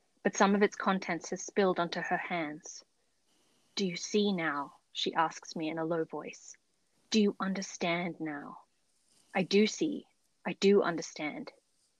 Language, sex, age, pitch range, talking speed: English, female, 20-39, 165-195 Hz, 155 wpm